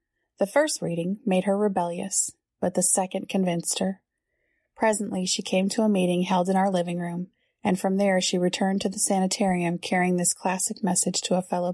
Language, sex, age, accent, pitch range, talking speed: English, female, 30-49, American, 180-200 Hz, 190 wpm